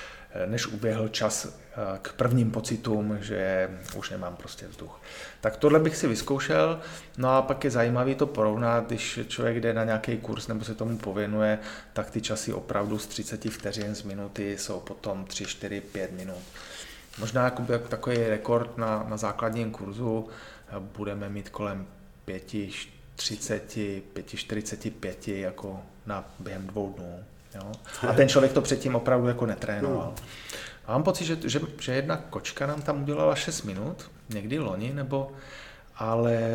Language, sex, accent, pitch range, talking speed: Czech, male, native, 105-120 Hz, 150 wpm